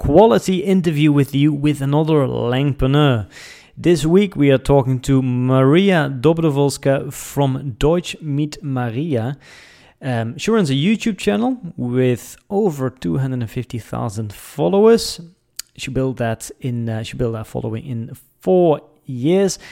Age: 30-49